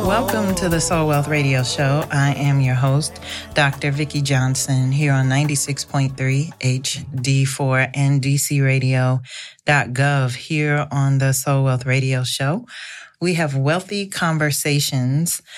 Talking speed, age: 120 wpm, 40-59